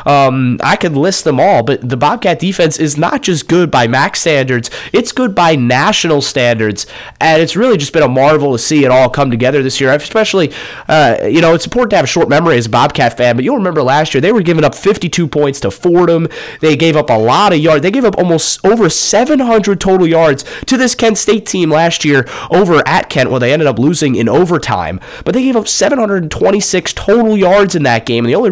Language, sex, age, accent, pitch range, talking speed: English, male, 30-49, American, 130-175 Hz, 235 wpm